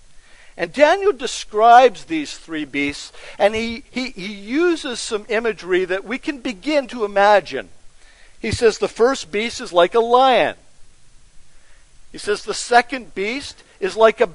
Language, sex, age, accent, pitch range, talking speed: English, male, 50-69, American, 155-255 Hz, 145 wpm